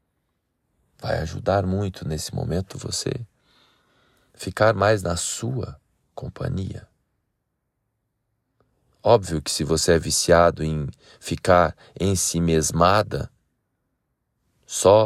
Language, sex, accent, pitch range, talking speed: Portuguese, male, Brazilian, 75-95 Hz, 90 wpm